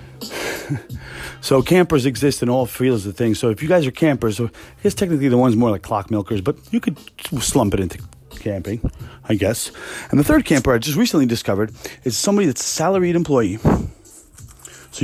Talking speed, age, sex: 190 wpm, 30-49, male